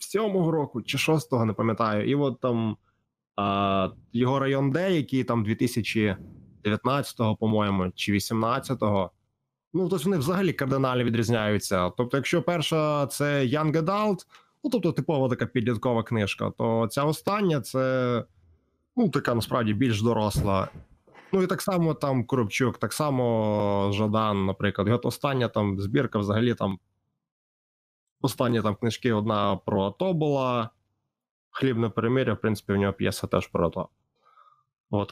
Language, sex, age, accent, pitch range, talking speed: Ukrainian, male, 20-39, native, 105-140 Hz, 135 wpm